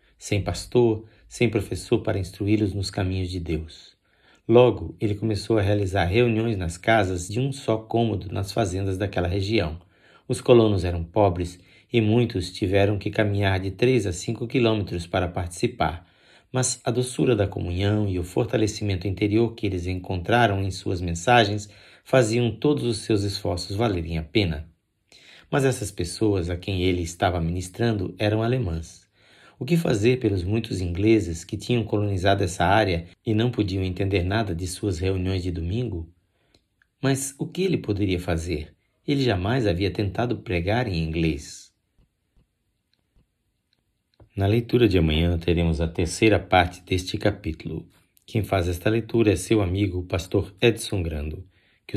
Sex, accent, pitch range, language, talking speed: male, Brazilian, 90-115 Hz, Portuguese, 150 wpm